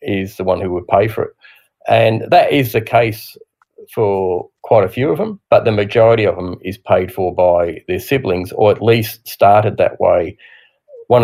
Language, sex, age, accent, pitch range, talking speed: English, male, 40-59, Australian, 100-120 Hz, 200 wpm